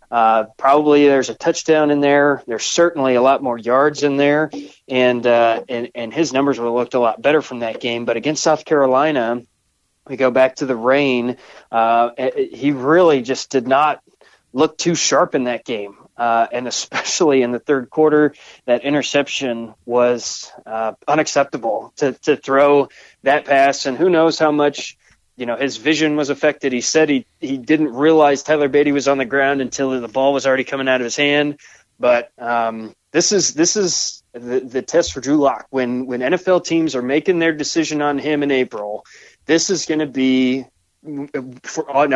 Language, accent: English, American